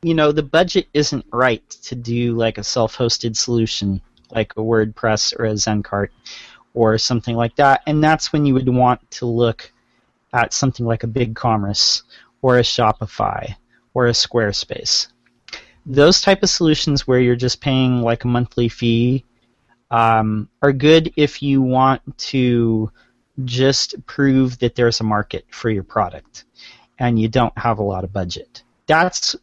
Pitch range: 115-140 Hz